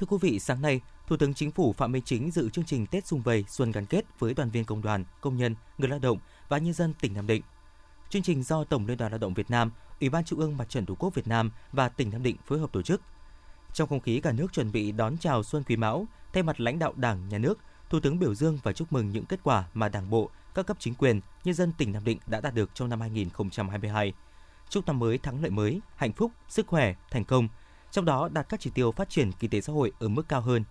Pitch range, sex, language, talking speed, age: 110-150 Hz, male, Vietnamese, 275 wpm, 20-39